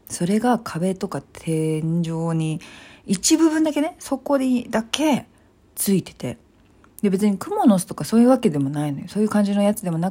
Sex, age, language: female, 40-59, Japanese